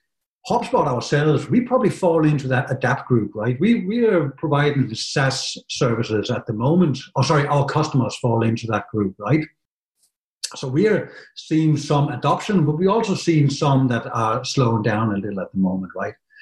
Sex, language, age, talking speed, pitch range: male, Finnish, 60-79, 185 wpm, 125-170 Hz